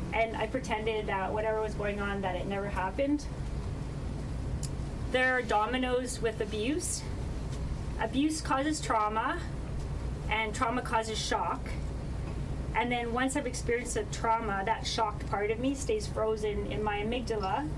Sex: female